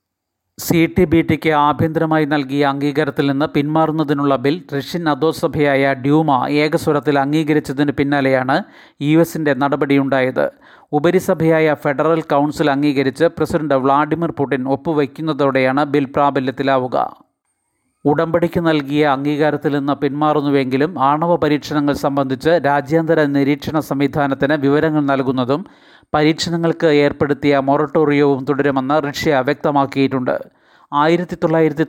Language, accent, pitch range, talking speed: Malayalam, native, 140-155 Hz, 95 wpm